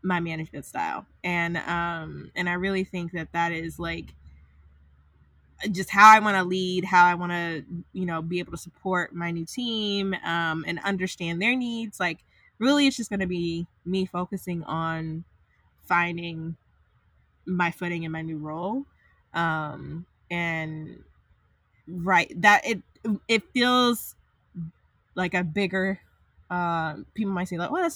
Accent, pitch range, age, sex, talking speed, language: American, 165-200 Hz, 10-29, female, 155 wpm, English